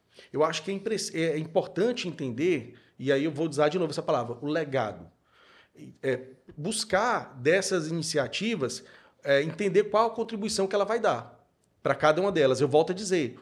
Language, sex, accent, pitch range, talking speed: Portuguese, male, Brazilian, 135-185 Hz, 160 wpm